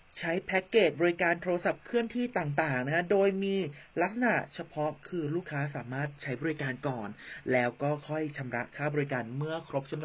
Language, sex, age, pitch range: Thai, male, 30-49, 130-170 Hz